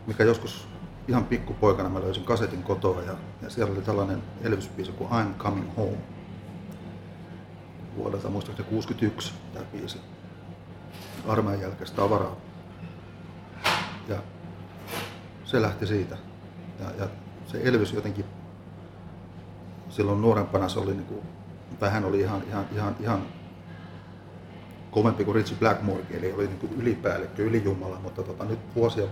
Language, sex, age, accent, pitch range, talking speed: Finnish, male, 40-59, native, 90-105 Hz, 115 wpm